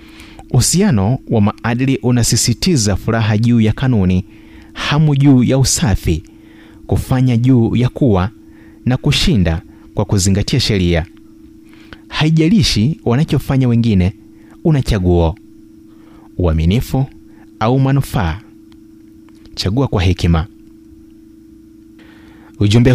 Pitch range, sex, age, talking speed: 95-140 Hz, male, 30-49, 85 wpm